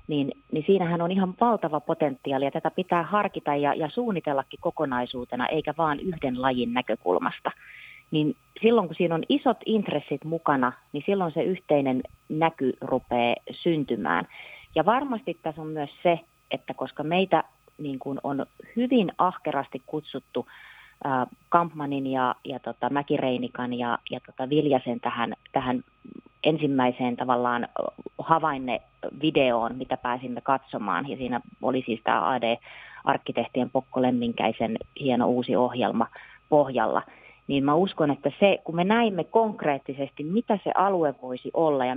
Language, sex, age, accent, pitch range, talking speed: Finnish, female, 30-49, native, 125-170 Hz, 135 wpm